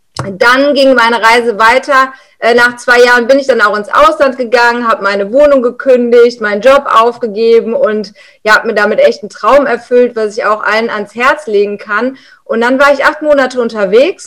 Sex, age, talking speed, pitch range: female, 30-49, 195 wpm, 215-265 Hz